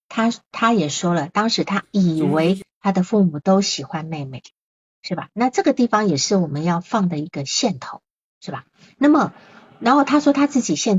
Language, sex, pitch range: Chinese, female, 160-205 Hz